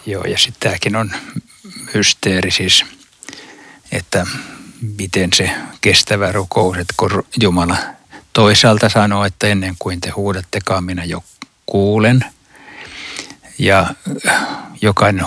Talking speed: 100 wpm